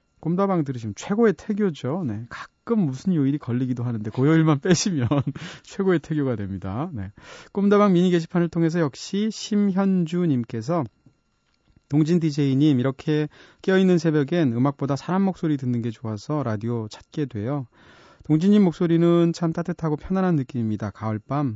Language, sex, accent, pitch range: Korean, male, native, 120-170 Hz